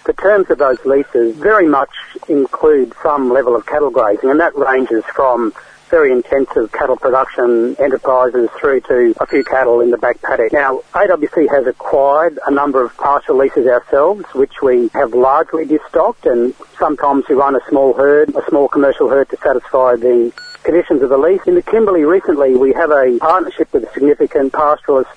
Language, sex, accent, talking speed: English, male, Australian, 180 wpm